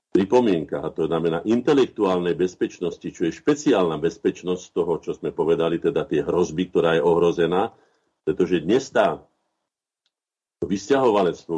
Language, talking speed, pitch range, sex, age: Slovak, 125 wpm, 80-95 Hz, male, 50-69